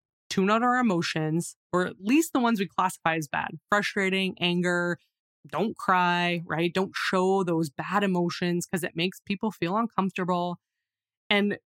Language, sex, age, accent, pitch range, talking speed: English, female, 20-39, American, 175-215 Hz, 155 wpm